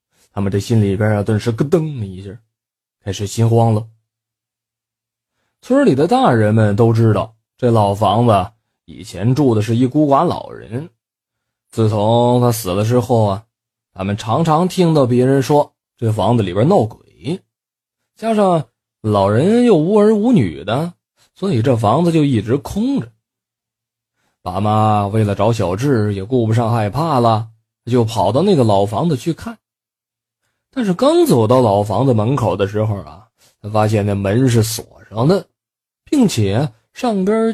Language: Chinese